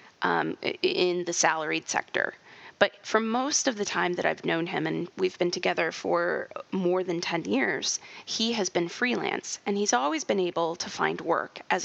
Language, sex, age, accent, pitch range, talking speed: English, female, 30-49, American, 180-295 Hz, 185 wpm